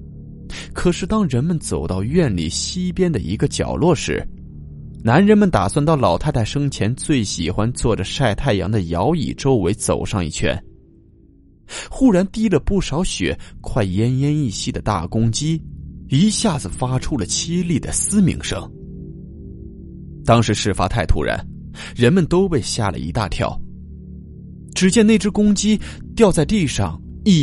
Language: Chinese